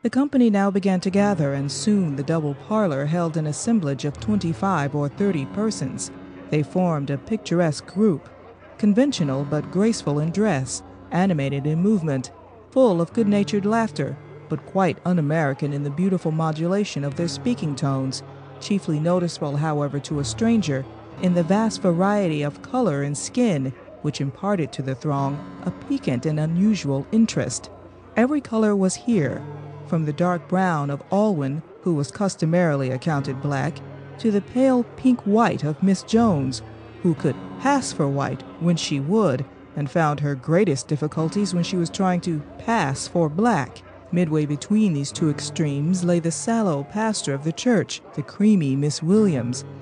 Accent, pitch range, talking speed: American, 140-200 Hz, 155 wpm